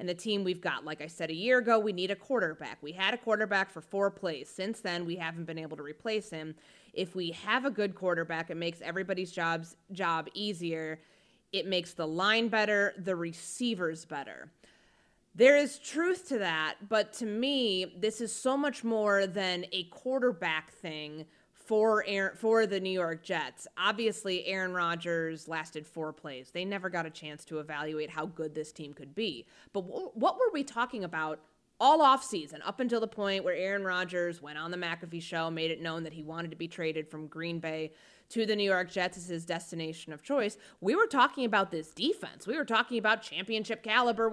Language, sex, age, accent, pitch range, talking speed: English, female, 30-49, American, 165-225 Hz, 200 wpm